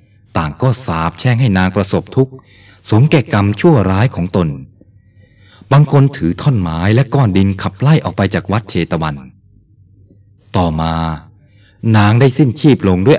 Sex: male